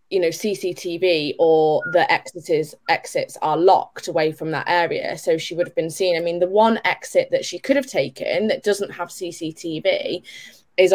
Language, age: English, 20-39